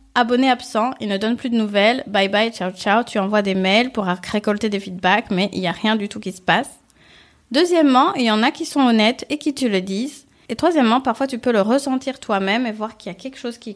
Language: French